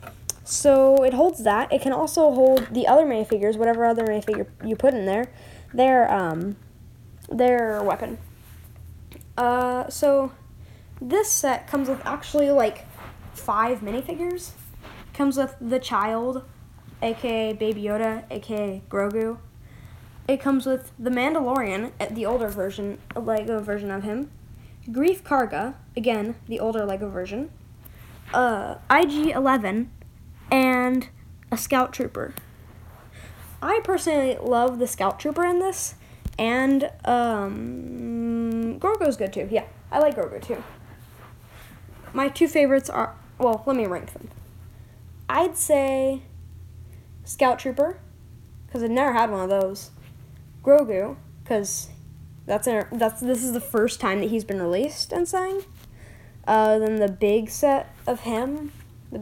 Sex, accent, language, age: female, American, English, 10-29